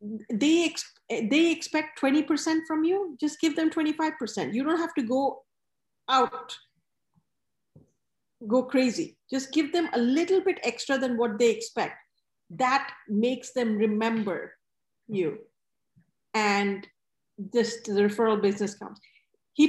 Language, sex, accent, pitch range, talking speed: English, female, Indian, 230-295 Hz, 130 wpm